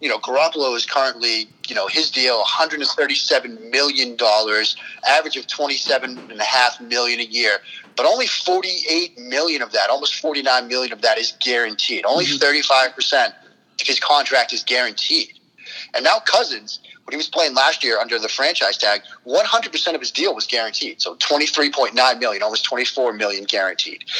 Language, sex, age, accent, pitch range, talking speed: English, male, 30-49, American, 120-170 Hz, 165 wpm